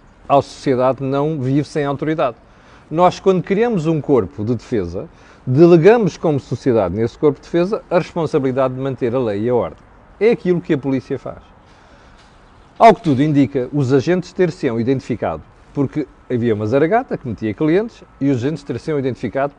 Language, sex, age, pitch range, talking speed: Portuguese, male, 40-59, 120-160 Hz, 175 wpm